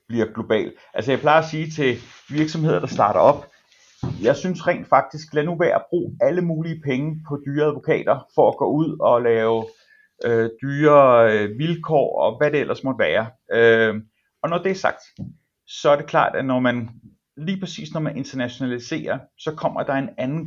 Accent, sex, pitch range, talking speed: native, male, 120-155 Hz, 180 wpm